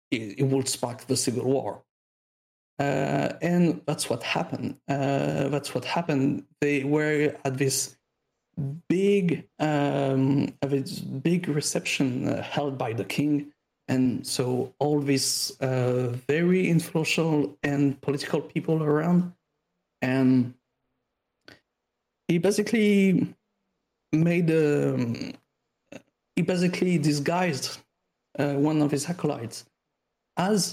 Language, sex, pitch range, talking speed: English, male, 135-165 Hz, 105 wpm